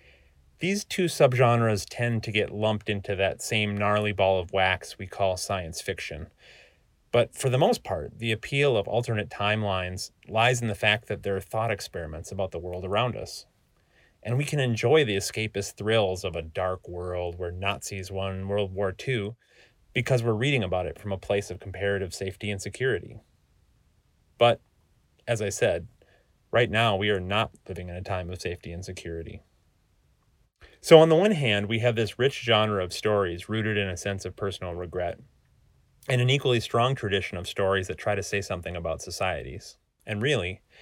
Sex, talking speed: male, 180 wpm